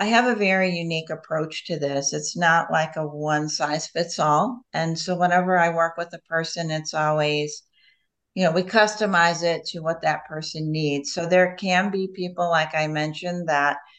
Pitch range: 155-180 Hz